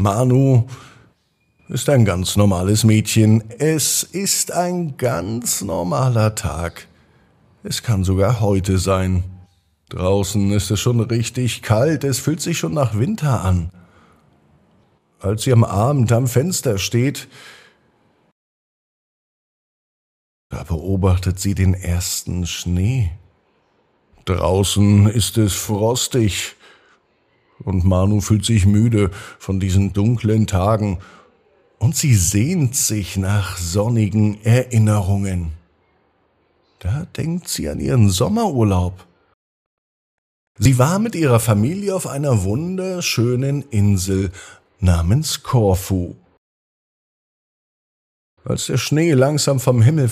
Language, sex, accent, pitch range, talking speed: German, male, German, 95-130 Hz, 105 wpm